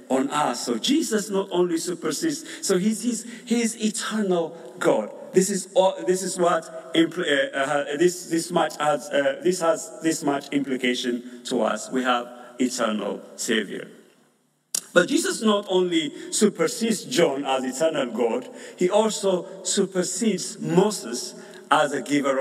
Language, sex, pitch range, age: English, male, 140-205 Hz, 50-69